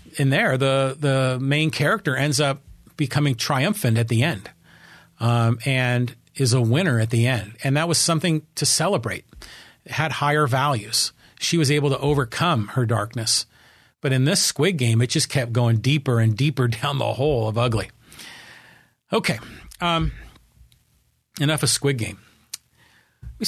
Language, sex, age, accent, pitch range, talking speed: English, male, 40-59, American, 125-165 Hz, 160 wpm